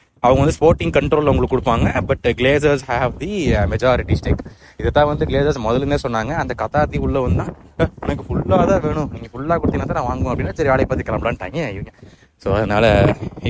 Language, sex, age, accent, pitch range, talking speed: Tamil, male, 20-39, native, 115-145 Hz, 180 wpm